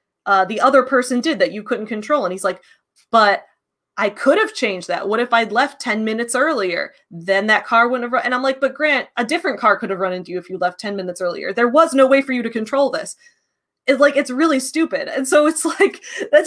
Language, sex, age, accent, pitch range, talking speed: English, female, 20-39, American, 220-315 Hz, 250 wpm